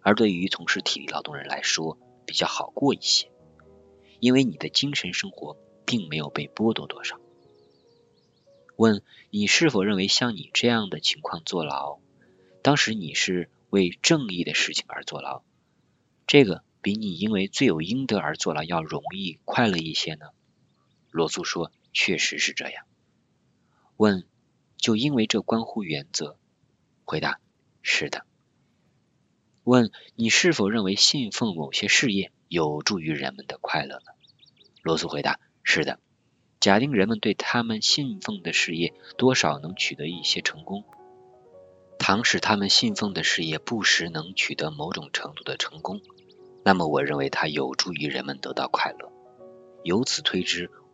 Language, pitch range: Chinese, 80-125 Hz